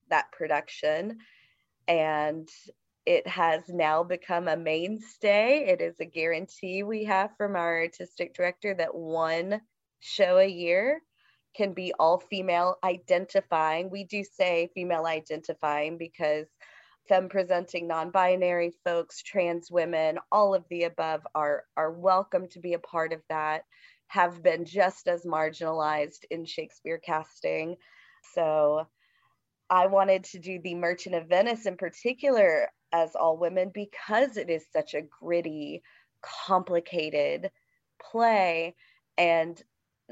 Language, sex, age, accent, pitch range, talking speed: English, female, 20-39, American, 160-190 Hz, 125 wpm